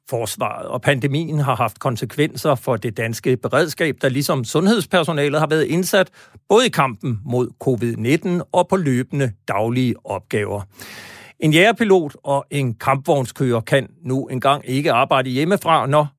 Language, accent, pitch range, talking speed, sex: Danish, native, 120-165 Hz, 140 wpm, male